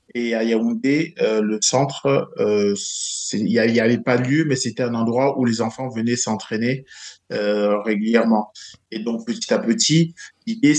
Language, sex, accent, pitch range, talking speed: French, male, French, 110-135 Hz, 165 wpm